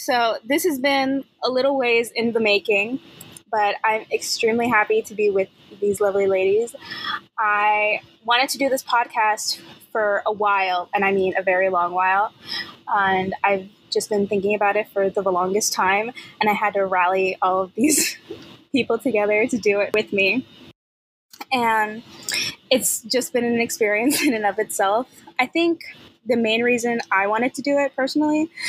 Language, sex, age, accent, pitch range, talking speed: English, female, 10-29, American, 200-245 Hz, 175 wpm